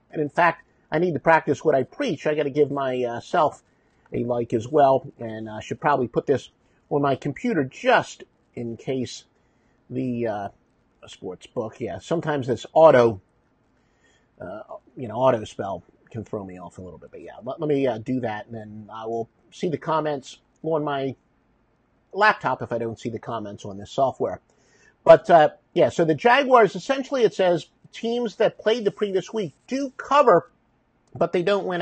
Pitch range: 125-170 Hz